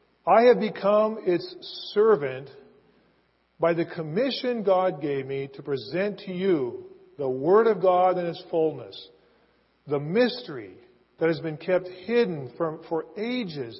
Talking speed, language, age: 135 wpm, English, 50-69